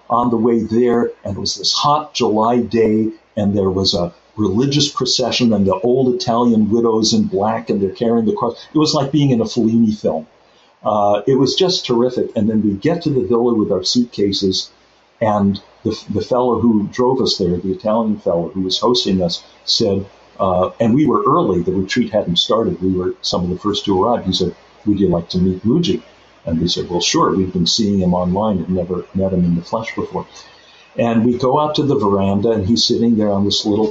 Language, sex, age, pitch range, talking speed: English, male, 50-69, 95-120 Hz, 225 wpm